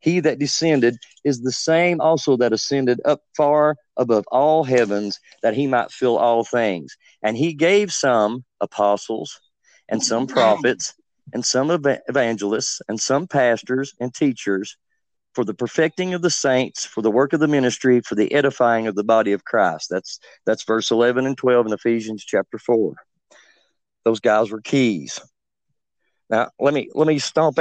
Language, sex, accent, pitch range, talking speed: English, male, American, 115-160 Hz, 165 wpm